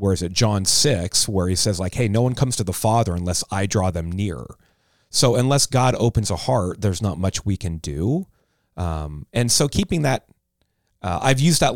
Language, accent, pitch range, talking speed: English, American, 95-120 Hz, 215 wpm